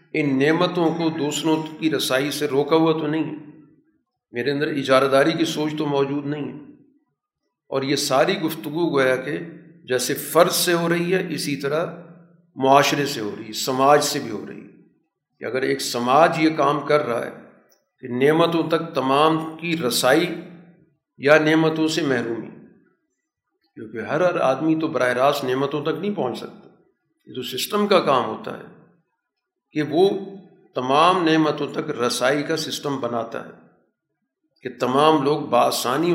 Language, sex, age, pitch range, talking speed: Urdu, male, 50-69, 130-160 Hz, 165 wpm